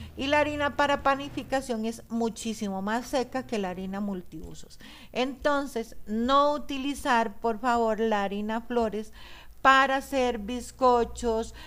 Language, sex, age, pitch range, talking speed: Spanish, female, 50-69, 205-255 Hz, 125 wpm